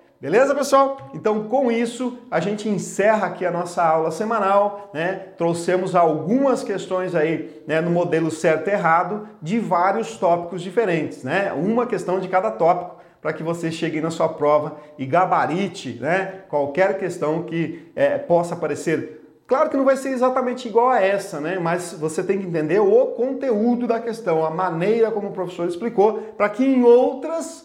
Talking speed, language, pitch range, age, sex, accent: 170 wpm, Portuguese, 160-220 Hz, 40-59, male, Brazilian